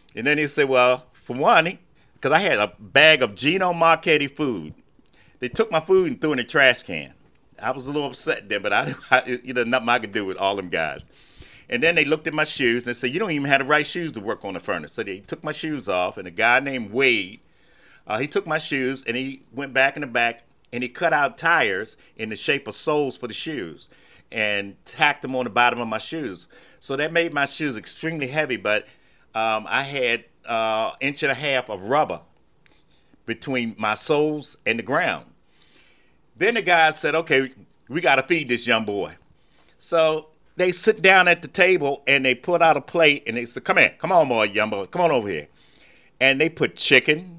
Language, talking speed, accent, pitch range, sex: English, 230 wpm, American, 125-160 Hz, male